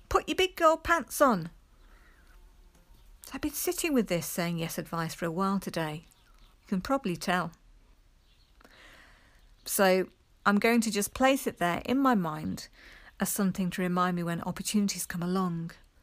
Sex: female